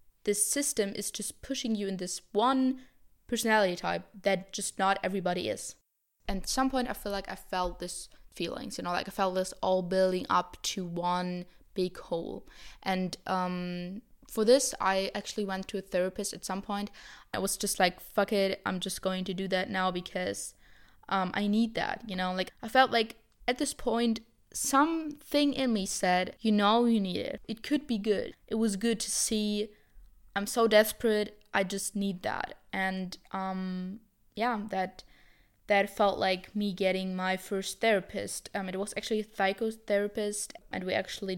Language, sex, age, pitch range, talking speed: English, female, 10-29, 185-215 Hz, 185 wpm